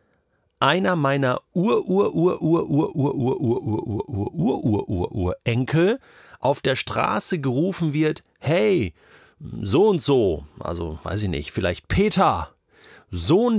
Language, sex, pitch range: German, male, 115-175 Hz